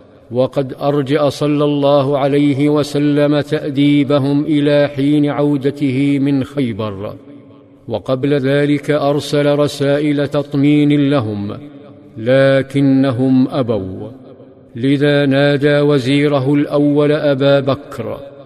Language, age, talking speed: Arabic, 50-69, 85 wpm